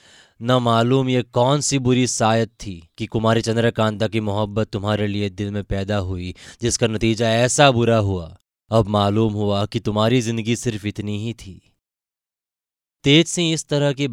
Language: Hindi